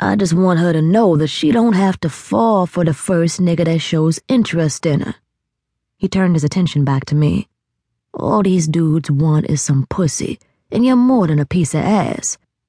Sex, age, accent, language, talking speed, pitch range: female, 20-39, American, English, 205 wpm, 150-200 Hz